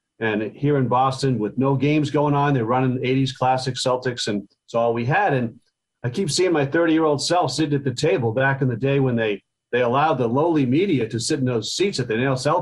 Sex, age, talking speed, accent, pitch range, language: male, 40-59, 240 wpm, American, 120-145 Hz, English